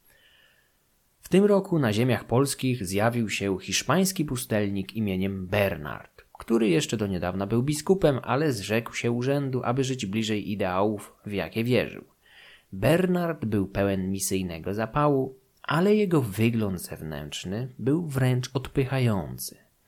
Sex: male